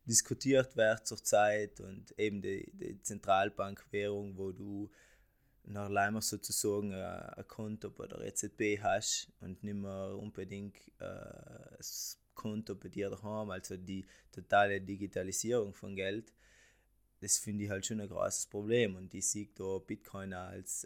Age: 20-39